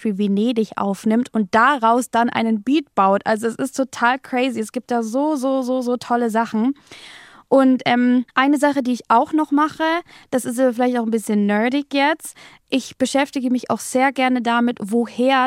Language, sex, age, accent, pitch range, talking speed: German, female, 20-39, German, 230-275 Hz, 180 wpm